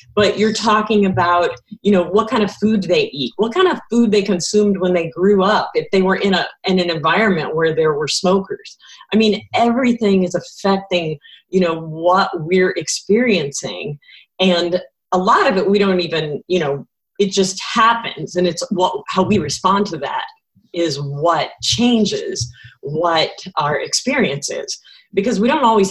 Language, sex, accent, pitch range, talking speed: English, female, American, 160-205 Hz, 175 wpm